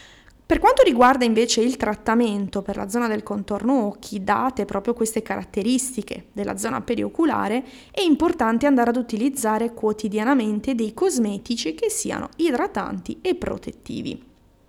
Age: 20-39